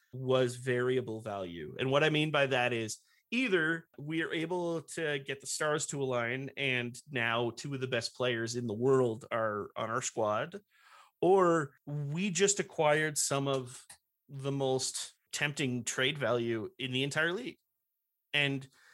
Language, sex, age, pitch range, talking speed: English, male, 30-49, 125-155 Hz, 160 wpm